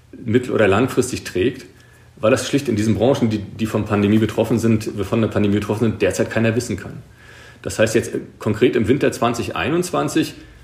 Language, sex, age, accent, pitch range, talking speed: German, male, 40-59, German, 105-120 Hz, 160 wpm